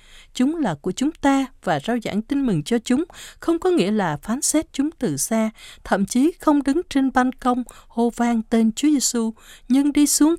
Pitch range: 195-275 Hz